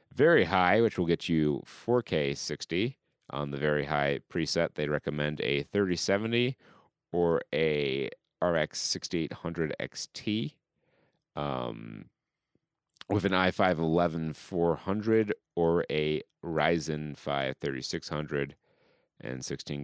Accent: American